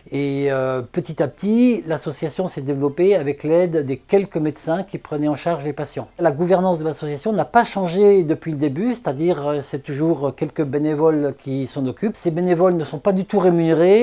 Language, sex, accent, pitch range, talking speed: French, male, French, 150-190 Hz, 195 wpm